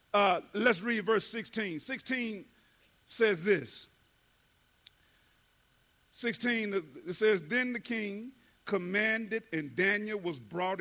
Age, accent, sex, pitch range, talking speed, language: 50-69, American, male, 170-240 Hz, 105 wpm, English